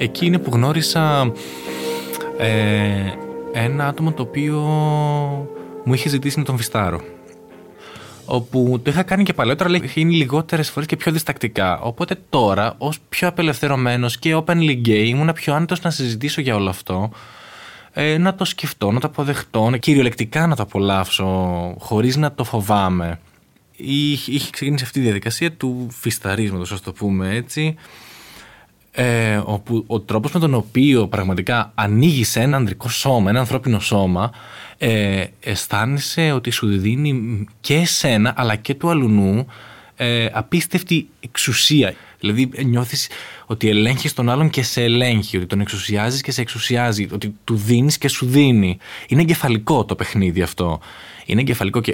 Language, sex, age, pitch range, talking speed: Greek, male, 20-39, 105-145 Hz, 150 wpm